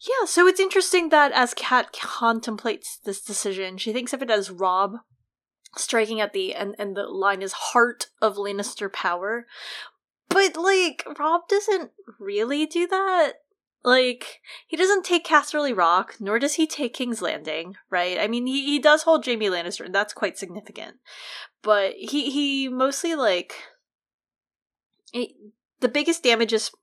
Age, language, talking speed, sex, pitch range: 20-39, English, 155 wpm, female, 195-275 Hz